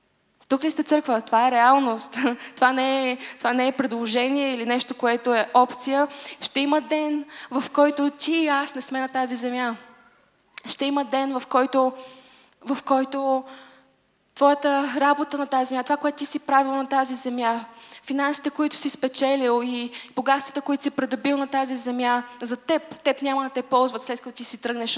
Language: Bulgarian